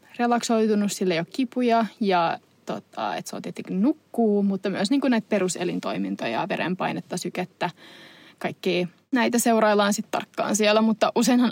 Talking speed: 135 wpm